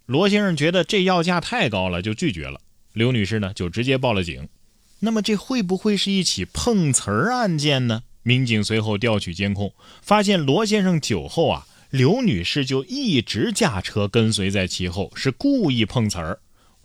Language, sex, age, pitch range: Chinese, male, 20-39, 100-155 Hz